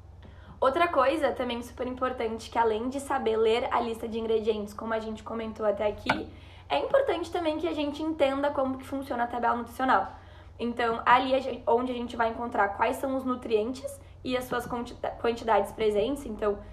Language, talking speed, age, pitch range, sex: Portuguese, 180 wpm, 10-29, 230-275 Hz, female